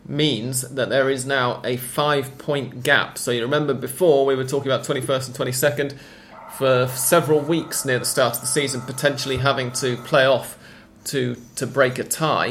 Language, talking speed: English, 185 wpm